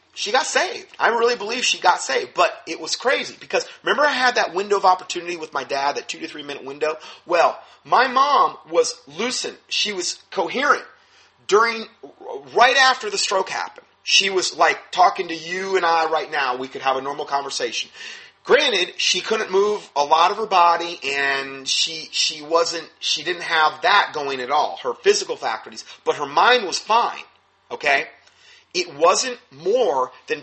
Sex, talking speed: male, 185 wpm